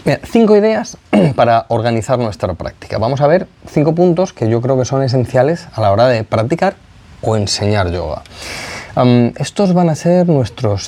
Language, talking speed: Spanish, 165 wpm